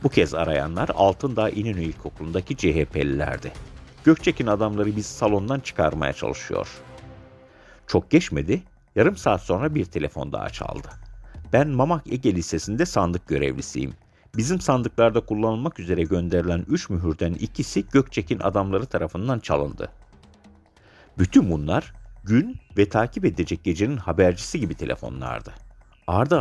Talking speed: 115 wpm